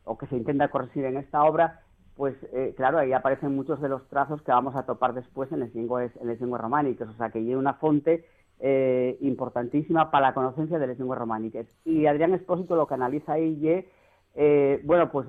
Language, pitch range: Spanish, 125-160 Hz